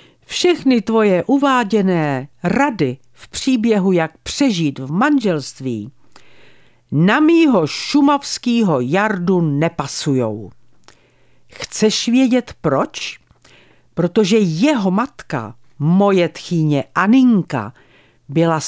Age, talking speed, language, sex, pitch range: 50-69, 80 wpm, Czech, female, 165-220 Hz